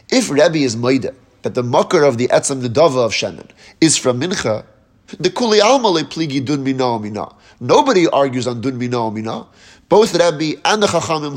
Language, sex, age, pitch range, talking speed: English, male, 30-49, 125-165 Hz, 190 wpm